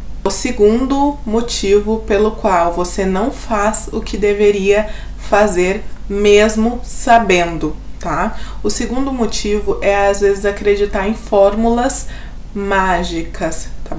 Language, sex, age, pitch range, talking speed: Portuguese, female, 20-39, 195-225 Hz, 110 wpm